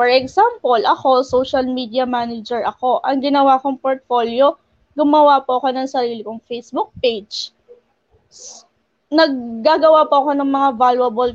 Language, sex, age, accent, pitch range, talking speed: English, female, 20-39, Filipino, 250-310 Hz, 130 wpm